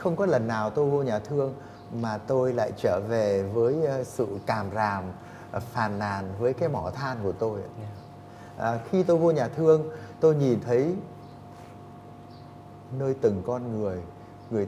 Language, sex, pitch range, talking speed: Vietnamese, male, 110-150 Hz, 160 wpm